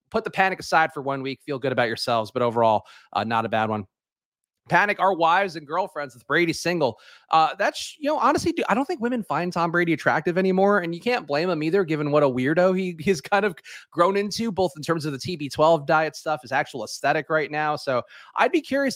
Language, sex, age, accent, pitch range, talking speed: English, male, 30-49, American, 140-180 Hz, 235 wpm